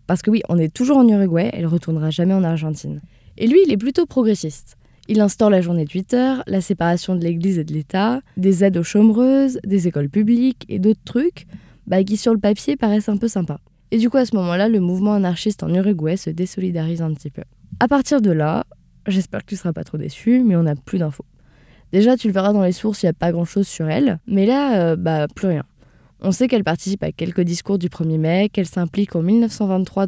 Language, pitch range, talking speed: French, 160-210 Hz, 235 wpm